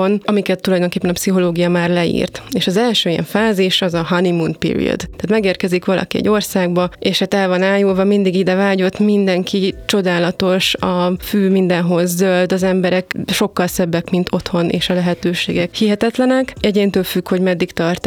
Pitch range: 180-205 Hz